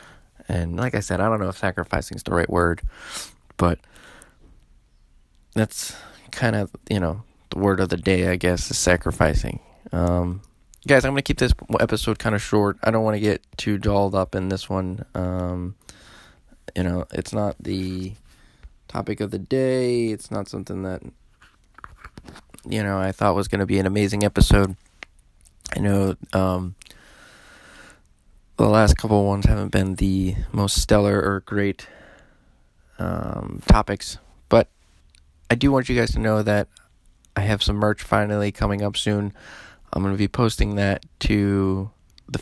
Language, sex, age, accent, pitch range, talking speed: English, male, 20-39, American, 95-105 Hz, 165 wpm